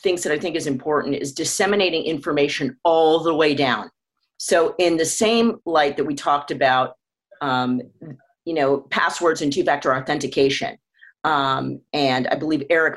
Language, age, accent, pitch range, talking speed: English, 40-59, American, 145-205 Hz, 160 wpm